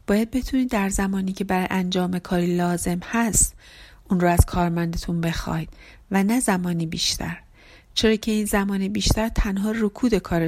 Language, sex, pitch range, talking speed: Persian, female, 175-220 Hz, 155 wpm